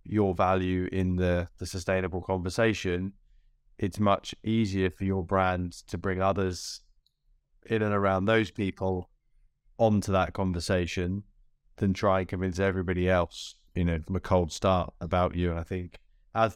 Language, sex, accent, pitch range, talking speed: English, male, British, 90-105 Hz, 150 wpm